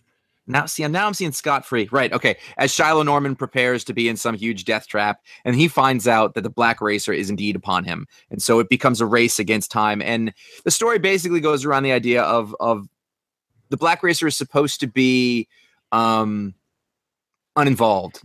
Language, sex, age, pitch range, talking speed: English, male, 30-49, 100-130 Hz, 195 wpm